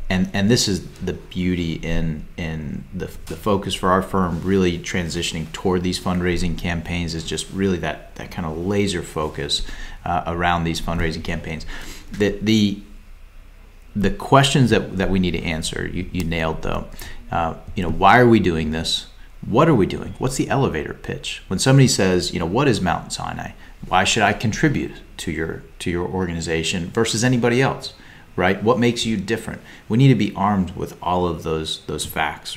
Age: 30-49